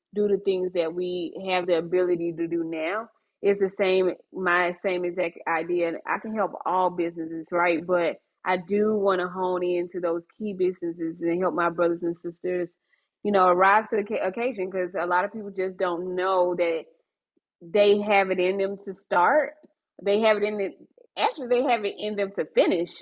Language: English